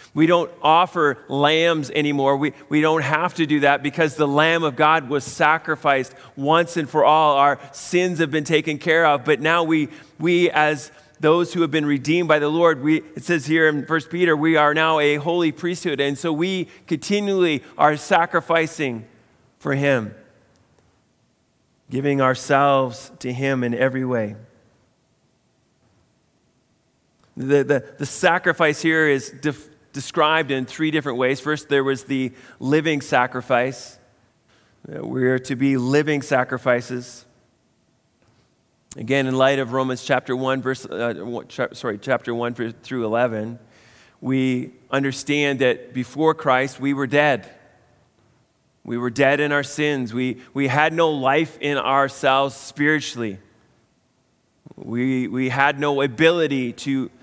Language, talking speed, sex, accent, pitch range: English, 145 wpm, male, American, 130-155 Hz